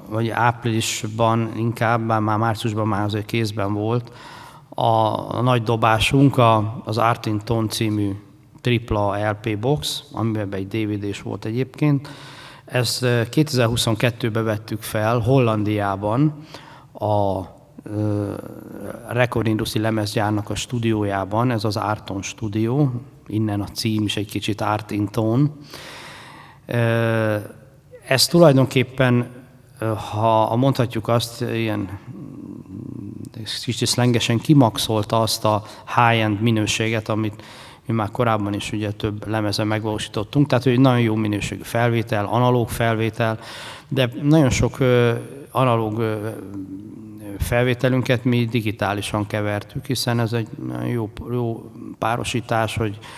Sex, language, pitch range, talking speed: male, Hungarian, 105-125 Hz, 110 wpm